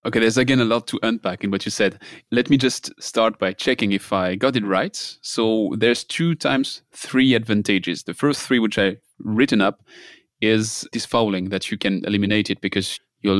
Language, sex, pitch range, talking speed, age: English, male, 100-115 Hz, 200 wpm, 30-49